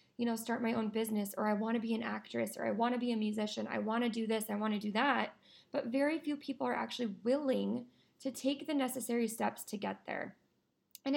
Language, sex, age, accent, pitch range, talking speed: English, female, 20-39, American, 200-235 Hz, 245 wpm